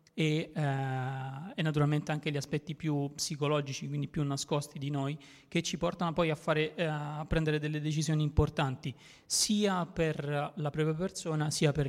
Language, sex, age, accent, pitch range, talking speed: Italian, male, 30-49, native, 145-165 Hz, 155 wpm